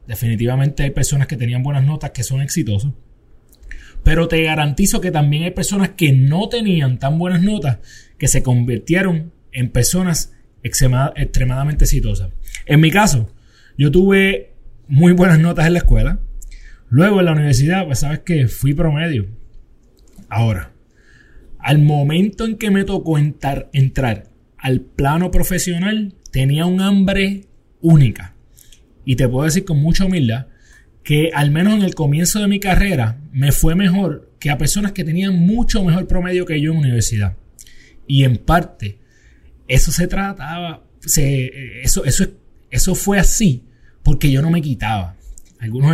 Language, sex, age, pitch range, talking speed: Spanish, male, 30-49, 125-175 Hz, 145 wpm